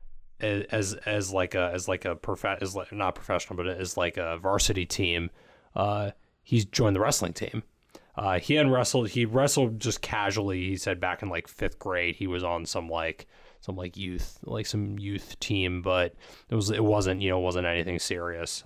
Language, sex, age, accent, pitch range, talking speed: English, male, 20-39, American, 90-105 Hz, 195 wpm